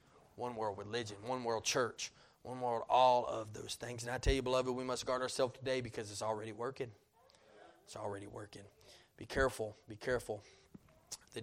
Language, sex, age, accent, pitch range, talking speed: English, male, 20-39, American, 115-135 Hz, 180 wpm